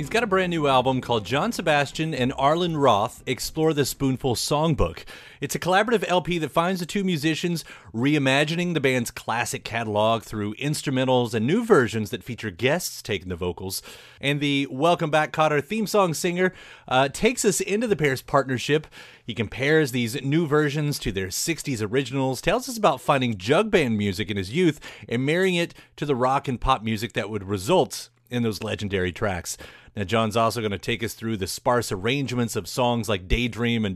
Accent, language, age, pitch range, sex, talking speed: American, English, 30-49, 110-155 Hz, male, 190 wpm